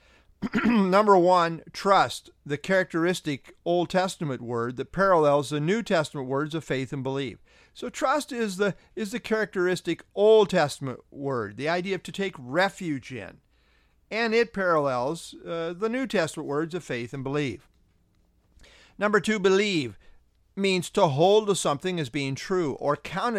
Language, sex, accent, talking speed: English, male, American, 155 wpm